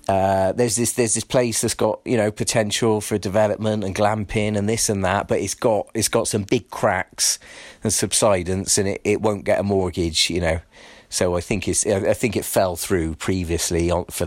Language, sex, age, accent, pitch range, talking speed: English, male, 40-59, British, 95-110 Hz, 210 wpm